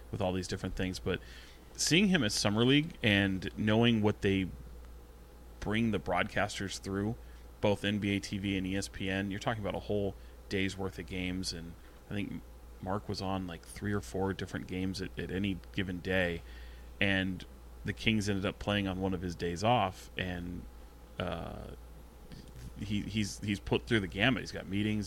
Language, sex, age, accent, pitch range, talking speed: English, male, 30-49, American, 90-105 Hz, 175 wpm